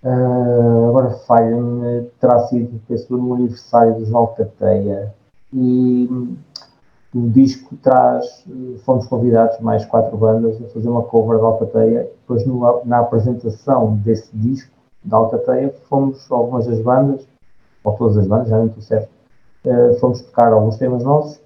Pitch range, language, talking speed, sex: 110-130 Hz, Portuguese, 160 wpm, male